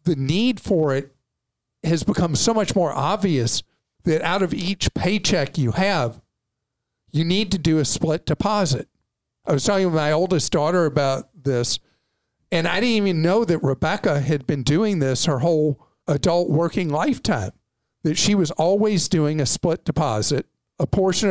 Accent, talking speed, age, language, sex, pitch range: American, 165 wpm, 50-69, English, male, 140-185 Hz